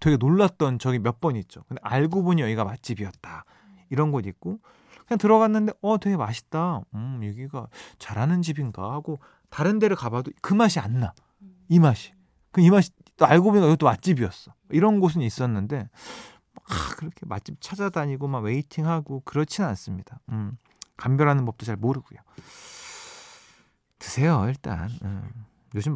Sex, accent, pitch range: male, native, 115-180 Hz